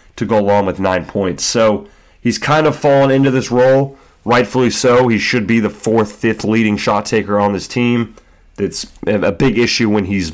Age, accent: 30-49, American